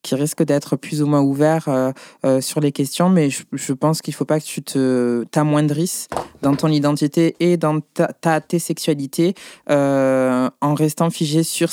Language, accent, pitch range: French, French, 140-165 Hz